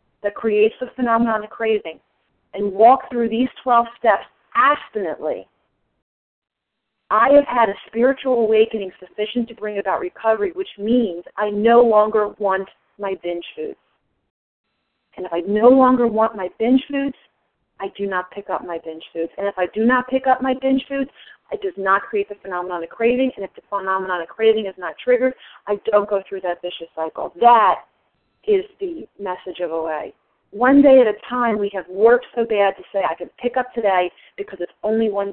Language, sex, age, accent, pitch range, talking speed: English, female, 40-59, American, 185-245 Hz, 190 wpm